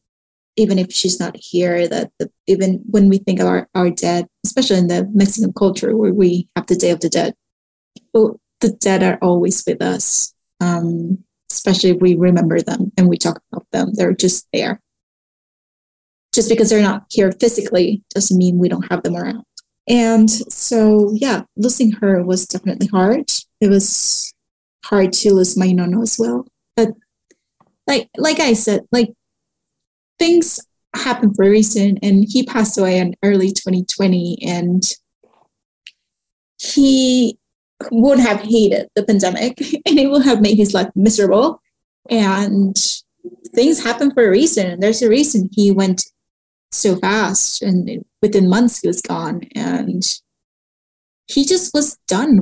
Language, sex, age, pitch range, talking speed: English, female, 20-39, 190-235 Hz, 160 wpm